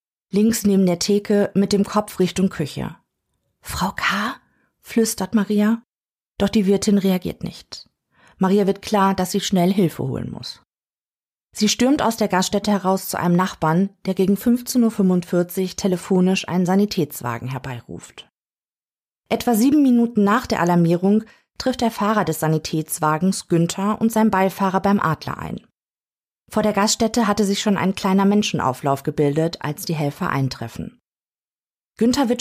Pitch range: 175-210 Hz